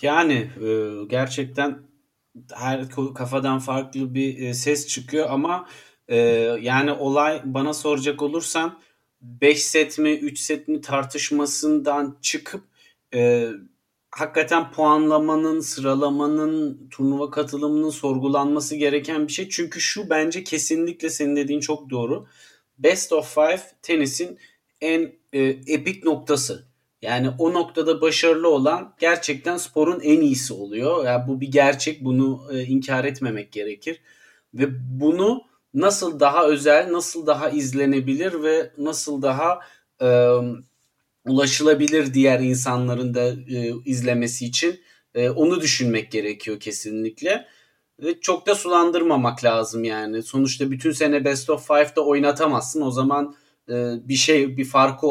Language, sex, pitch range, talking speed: Turkish, male, 130-155 Hz, 120 wpm